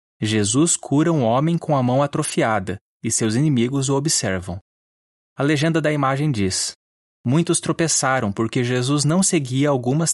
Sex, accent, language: male, Brazilian, Portuguese